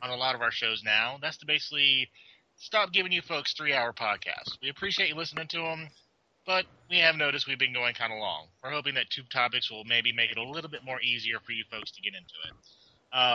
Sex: male